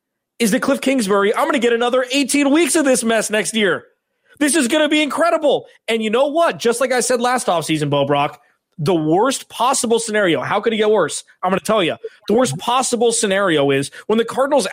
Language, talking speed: English, 230 wpm